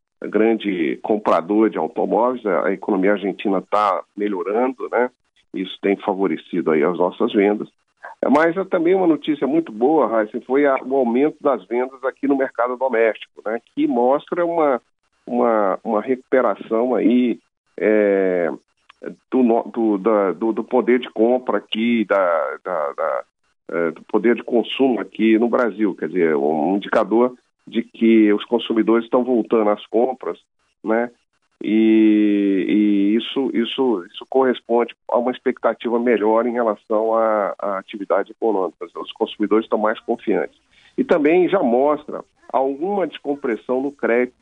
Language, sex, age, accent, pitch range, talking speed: Portuguese, male, 50-69, Brazilian, 105-125 Hz, 140 wpm